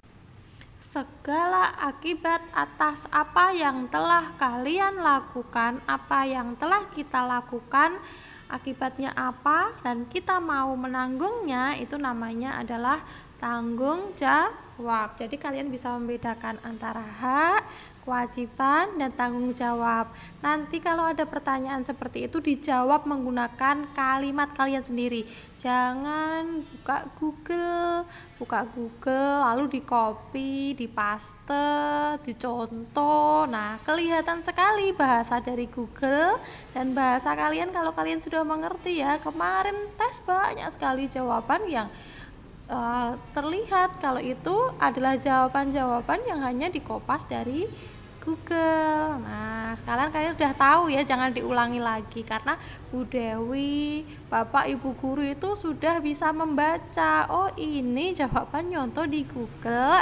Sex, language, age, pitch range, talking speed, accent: female, Indonesian, 20-39, 240-315 Hz, 110 wpm, native